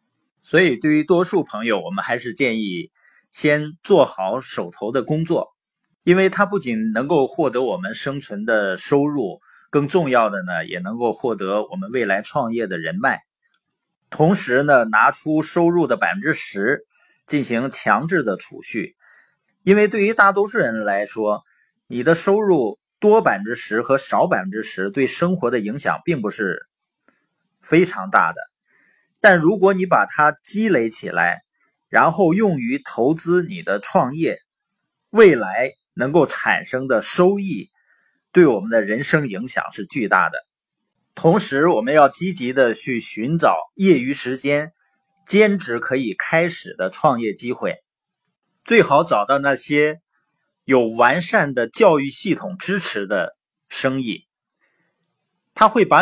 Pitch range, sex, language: 130-195 Hz, male, Chinese